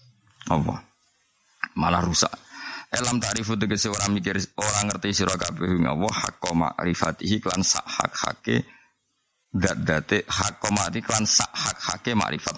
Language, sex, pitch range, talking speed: Malay, male, 90-115 Hz, 110 wpm